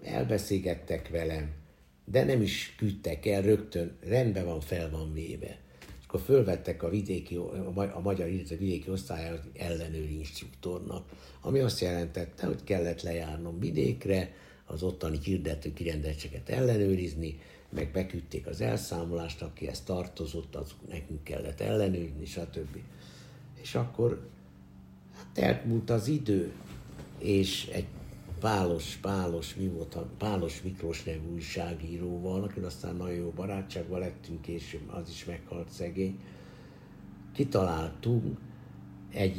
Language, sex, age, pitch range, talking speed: Hungarian, male, 60-79, 80-95 Hz, 115 wpm